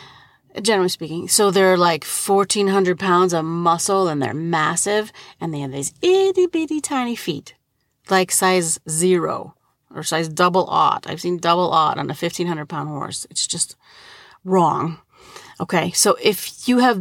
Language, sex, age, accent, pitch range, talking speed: English, female, 40-59, American, 175-240 Hz, 155 wpm